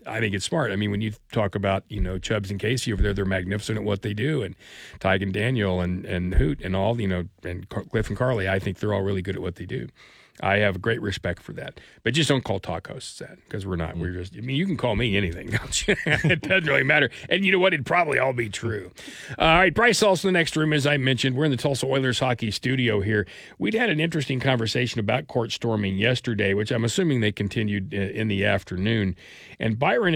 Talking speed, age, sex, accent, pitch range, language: 245 wpm, 40-59, male, American, 100-130 Hz, English